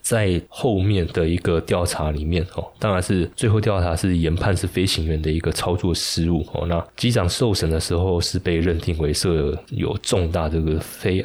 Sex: male